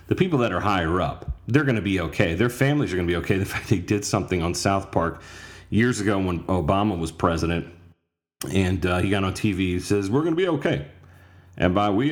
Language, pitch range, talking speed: English, 85-120 Hz, 240 wpm